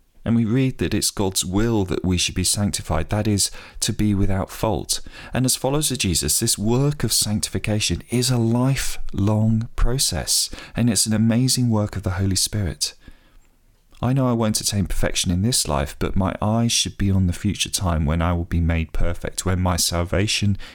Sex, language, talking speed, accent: male, English, 195 wpm, British